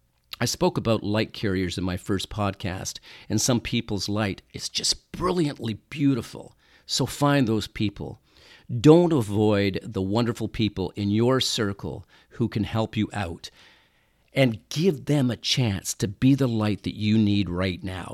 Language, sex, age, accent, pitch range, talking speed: English, male, 50-69, American, 95-125 Hz, 160 wpm